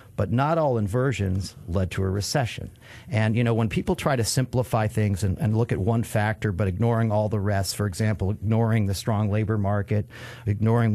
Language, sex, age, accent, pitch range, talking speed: English, male, 50-69, American, 105-125 Hz, 195 wpm